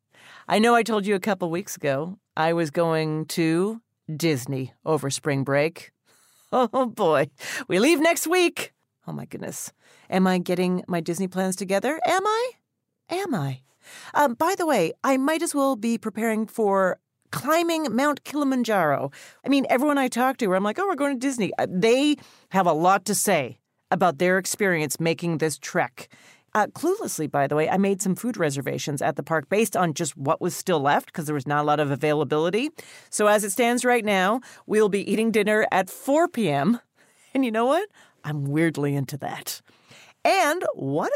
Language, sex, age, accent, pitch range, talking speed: English, female, 40-59, American, 165-250 Hz, 185 wpm